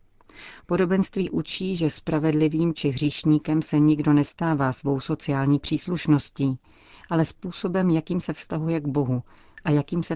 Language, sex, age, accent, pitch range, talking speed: Czech, female, 40-59, native, 140-160 Hz, 130 wpm